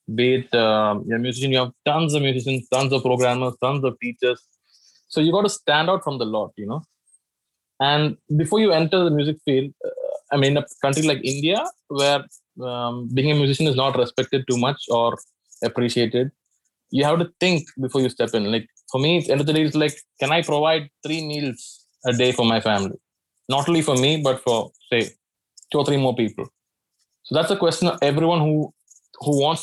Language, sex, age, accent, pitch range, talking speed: English, male, 20-39, Indian, 125-150 Hz, 210 wpm